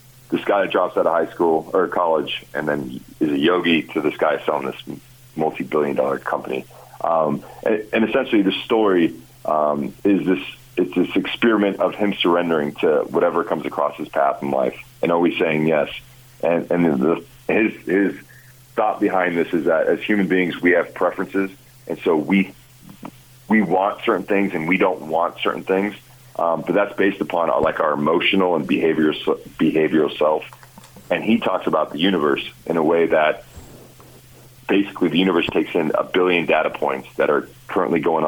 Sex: male